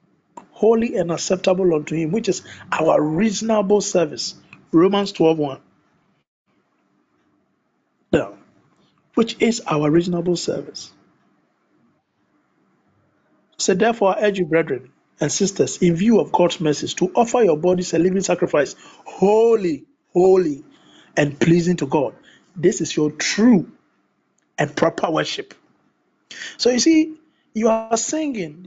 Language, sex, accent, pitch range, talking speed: English, male, Nigerian, 170-225 Hz, 120 wpm